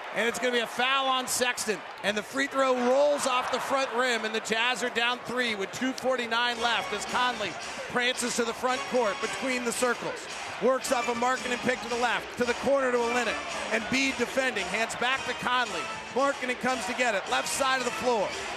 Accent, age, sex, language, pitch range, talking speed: American, 40-59, male, English, 235-255 Hz, 220 wpm